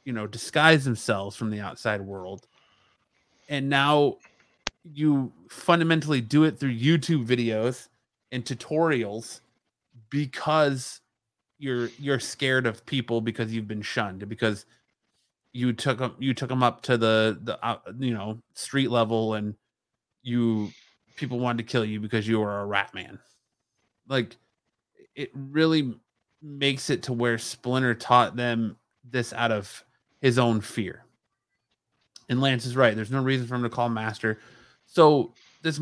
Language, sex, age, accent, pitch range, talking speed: English, male, 20-39, American, 115-140 Hz, 145 wpm